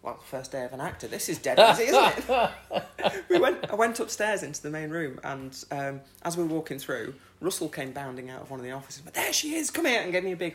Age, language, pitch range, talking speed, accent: 30-49, English, 125-160 Hz, 275 wpm, British